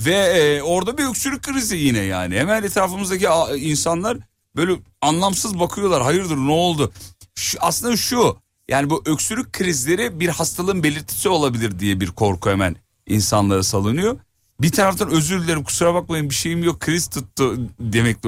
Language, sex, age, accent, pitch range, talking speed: Turkish, male, 40-59, native, 120-170 Hz, 145 wpm